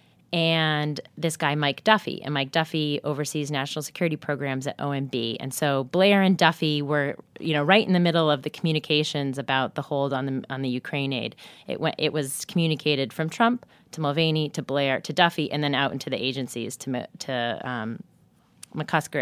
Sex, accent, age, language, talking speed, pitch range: female, American, 30-49, English, 190 wpm, 140-165 Hz